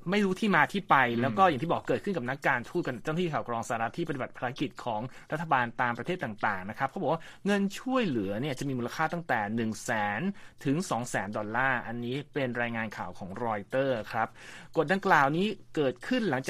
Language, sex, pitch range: Thai, male, 120-170 Hz